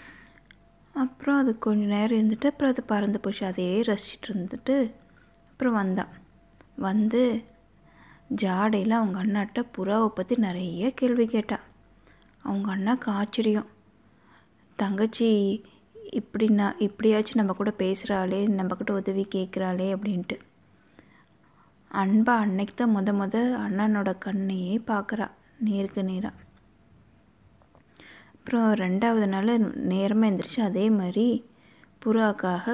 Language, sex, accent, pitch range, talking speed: Tamil, female, native, 195-230 Hz, 95 wpm